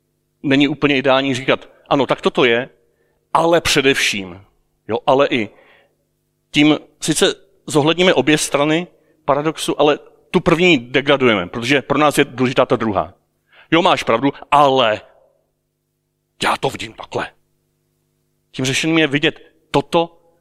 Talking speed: 125 wpm